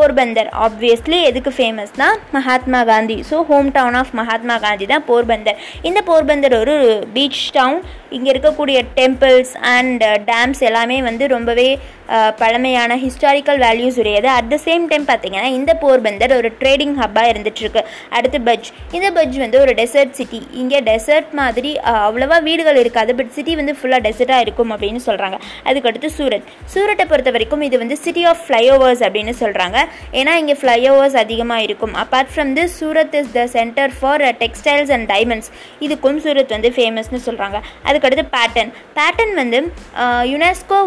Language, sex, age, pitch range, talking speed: Tamil, female, 20-39, 235-290 Hz, 150 wpm